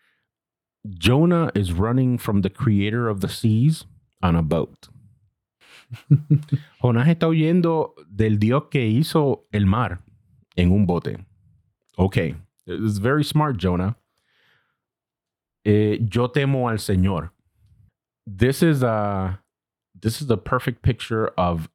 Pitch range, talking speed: 100-125 Hz, 120 wpm